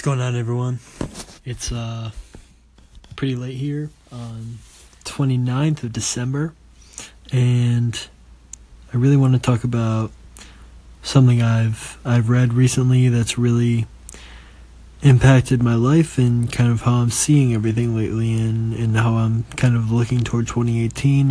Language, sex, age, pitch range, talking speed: English, male, 20-39, 105-125 Hz, 130 wpm